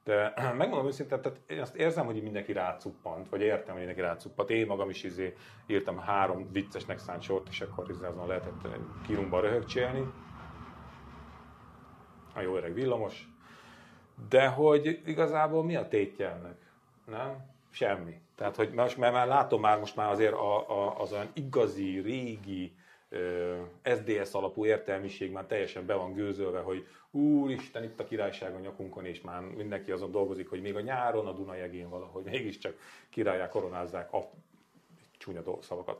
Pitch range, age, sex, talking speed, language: 90-115 Hz, 30-49, male, 155 wpm, Hungarian